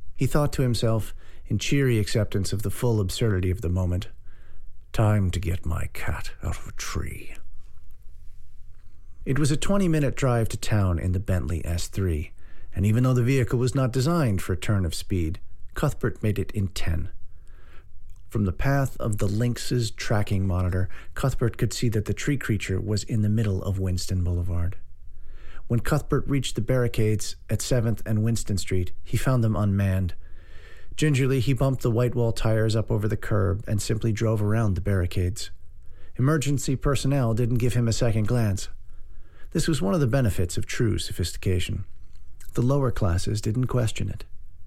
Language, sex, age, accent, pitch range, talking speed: English, male, 50-69, American, 90-120 Hz, 170 wpm